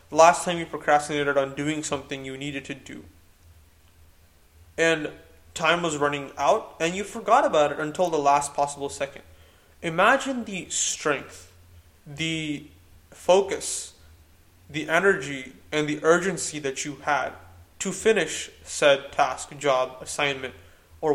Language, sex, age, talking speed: English, male, 20-39, 130 wpm